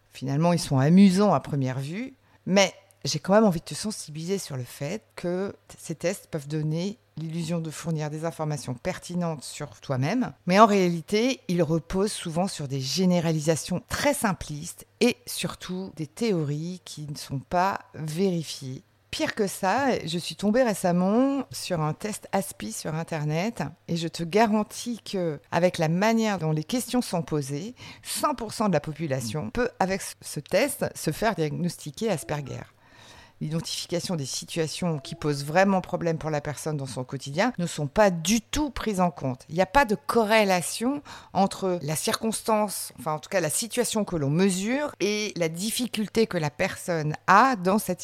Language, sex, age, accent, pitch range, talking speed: French, female, 50-69, French, 155-210 Hz, 170 wpm